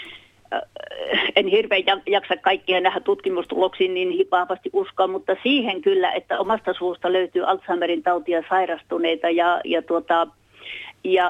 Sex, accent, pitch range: female, native, 180-240 Hz